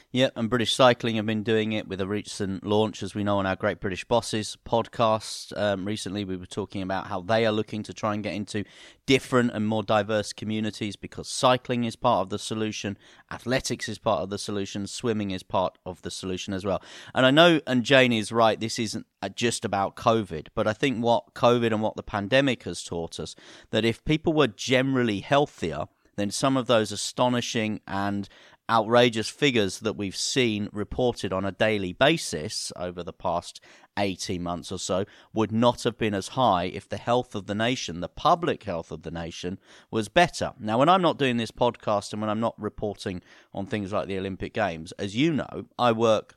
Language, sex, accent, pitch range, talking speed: English, male, British, 100-120 Hz, 205 wpm